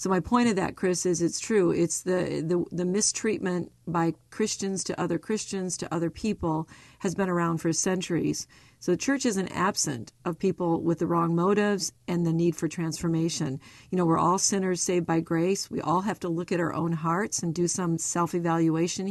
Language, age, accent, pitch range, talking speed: English, 50-69, American, 165-195 Hz, 205 wpm